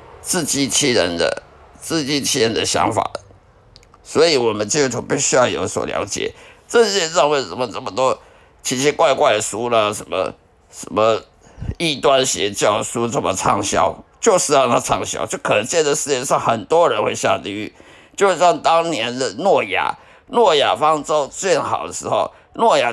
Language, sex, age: Chinese, male, 50-69